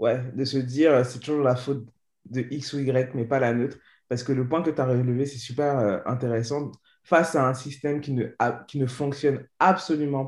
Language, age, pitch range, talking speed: French, 20-39, 130-155 Hz, 215 wpm